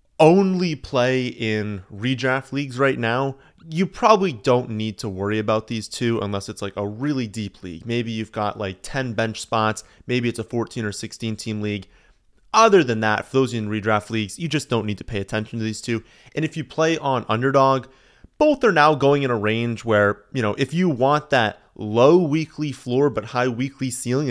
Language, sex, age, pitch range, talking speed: English, male, 30-49, 110-135 Hz, 205 wpm